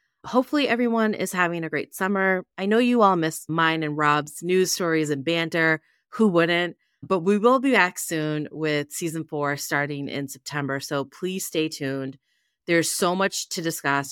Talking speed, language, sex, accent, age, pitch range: 180 wpm, English, female, American, 30-49, 145-185 Hz